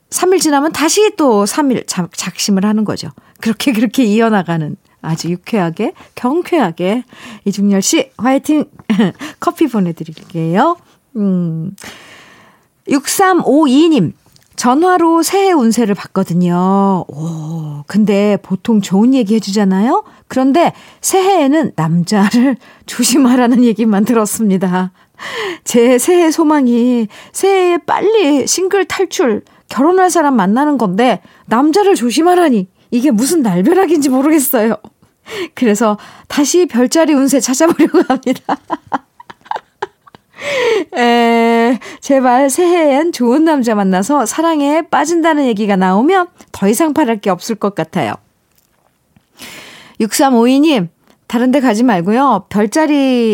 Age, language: 40-59, Korean